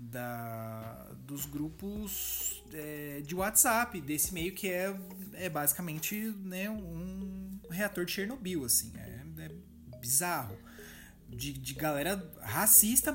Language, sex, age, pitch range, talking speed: Portuguese, male, 20-39, 135-200 Hz, 115 wpm